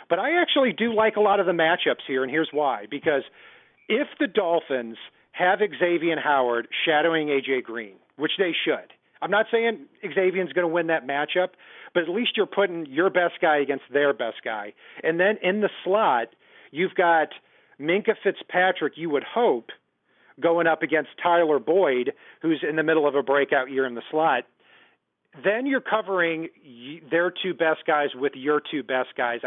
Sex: male